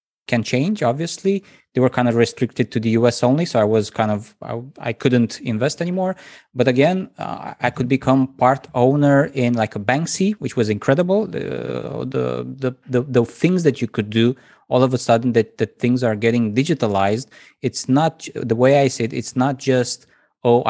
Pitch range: 115-135 Hz